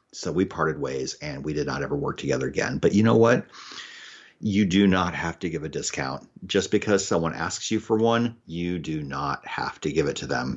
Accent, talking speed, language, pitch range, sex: American, 225 wpm, English, 85-110 Hz, male